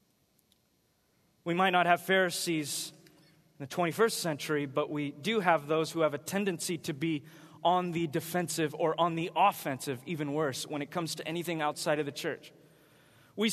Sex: male